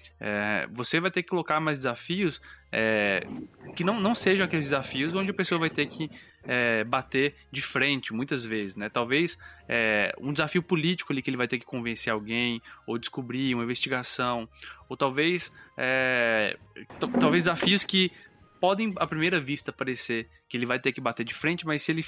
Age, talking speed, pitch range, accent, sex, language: 20-39, 165 wpm, 120-160 Hz, Brazilian, male, Portuguese